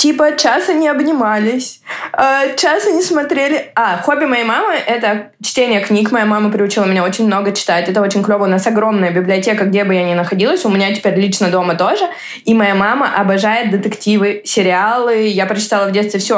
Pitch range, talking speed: 195-240 Hz, 185 wpm